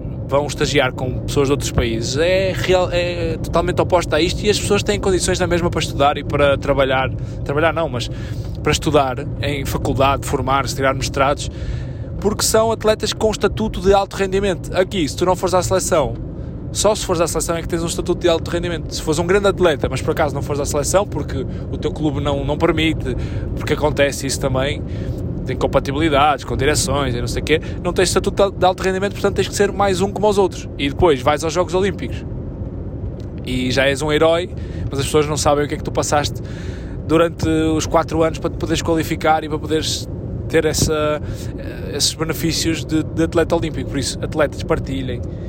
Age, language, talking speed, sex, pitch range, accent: 20-39, Portuguese, 205 wpm, male, 130-165 Hz, Brazilian